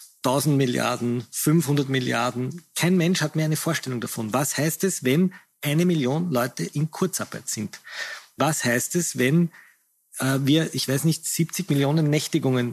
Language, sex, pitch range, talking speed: German, male, 125-155 Hz, 150 wpm